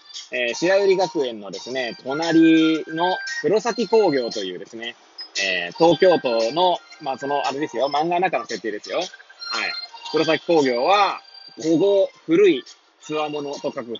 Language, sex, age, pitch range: Japanese, male, 20-39, 140-220 Hz